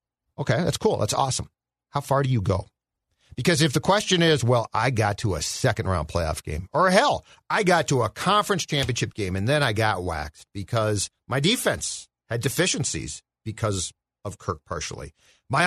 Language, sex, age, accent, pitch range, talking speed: English, male, 50-69, American, 110-150 Hz, 180 wpm